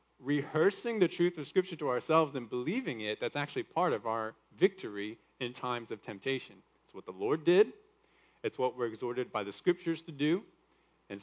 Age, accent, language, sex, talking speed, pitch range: 40-59, American, English, male, 185 wpm, 135-175 Hz